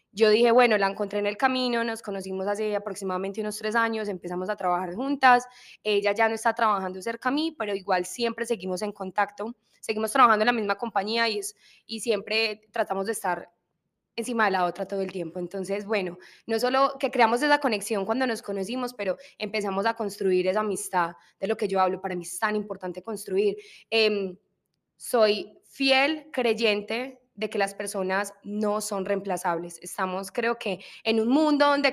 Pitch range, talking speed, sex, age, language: 195-230 Hz, 190 wpm, female, 10-29, Spanish